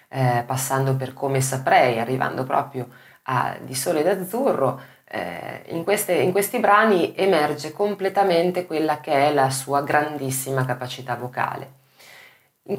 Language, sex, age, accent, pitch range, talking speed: Italian, female, 20-39, native, 135-195 Hz, 130 wpm